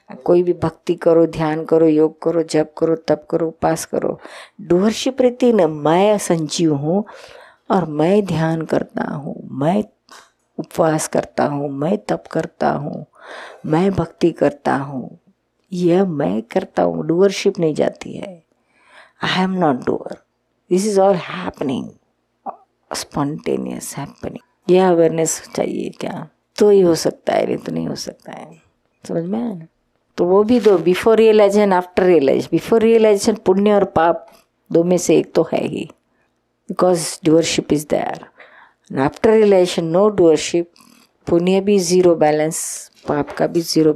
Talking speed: 150 wpm